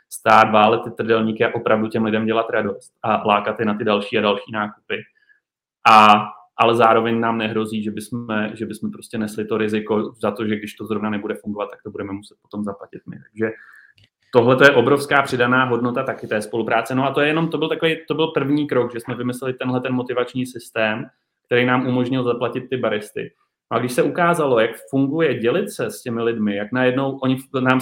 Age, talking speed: 30-49, 205 wpm